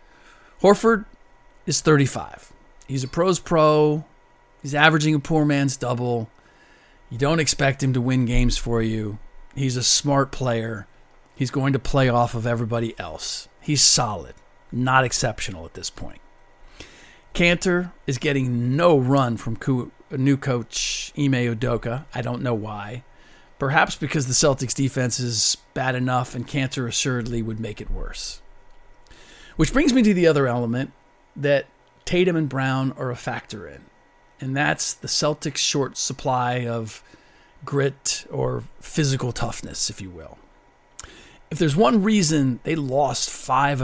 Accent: American